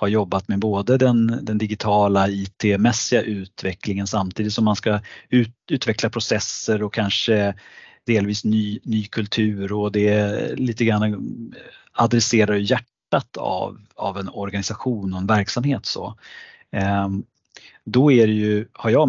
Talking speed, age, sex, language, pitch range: 135 wpm, 30-49, male, Swedish, 100-120 Hz